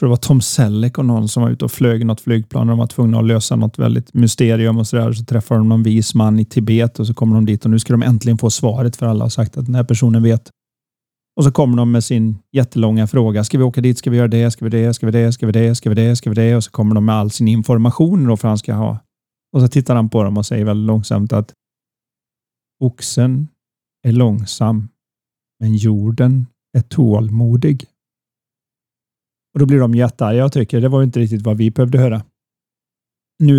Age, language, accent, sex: 40-59, Swedish, native, male